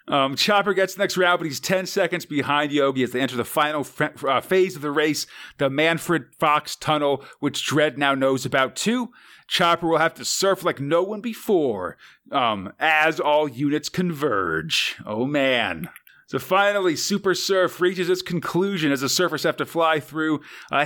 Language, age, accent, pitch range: English, 40-59, American, 140-180 Hz